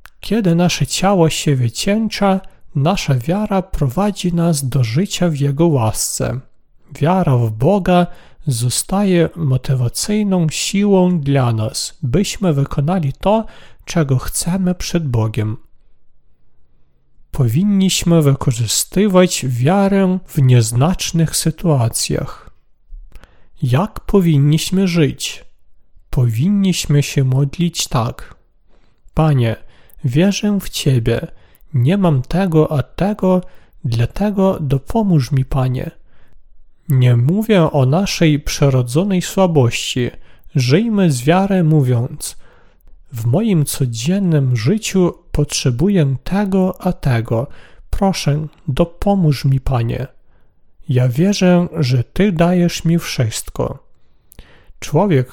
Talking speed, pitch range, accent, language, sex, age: 90 wpm, 130-185 Hz, native, Polish, male, 40-59